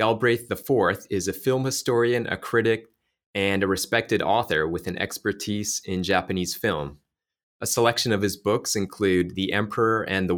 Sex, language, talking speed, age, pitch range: male, English, 160 wpm, 20-39, 95-110 Hz